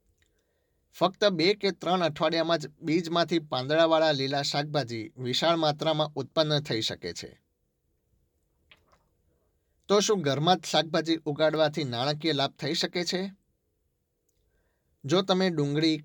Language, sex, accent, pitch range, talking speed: Gujarati, male, native, 125-160 Hz, 110 wpm